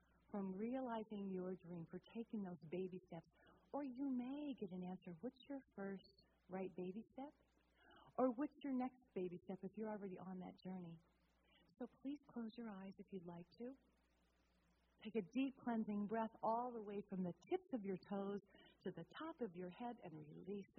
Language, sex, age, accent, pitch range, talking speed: English, female, 40-59, American, 160-205 Hz, 185 wpm